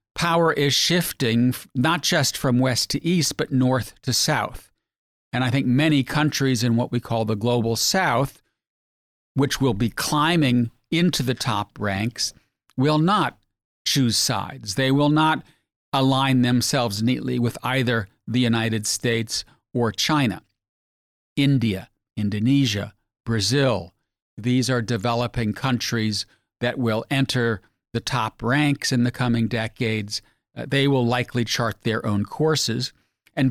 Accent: American